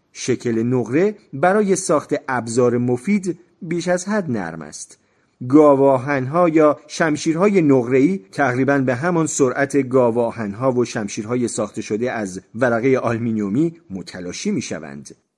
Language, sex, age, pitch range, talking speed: Persian, male, 40-59, 125-180 Hz, 115 wpm